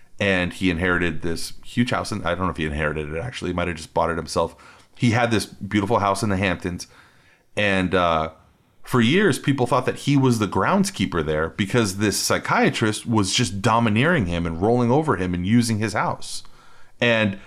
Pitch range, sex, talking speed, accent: 90-115 Hz, male, 200 wpm, American